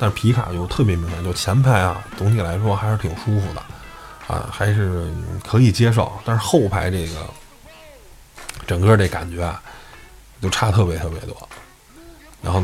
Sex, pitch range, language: male, 85-105 Hz, Chinese